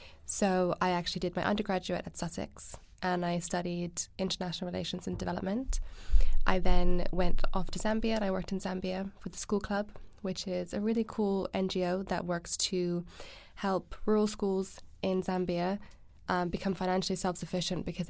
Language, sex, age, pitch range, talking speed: English, female, 10-29, 175-195 Hz, 160 wpm